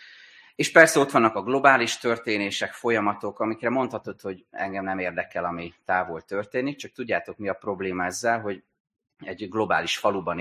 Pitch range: 95-125 Hz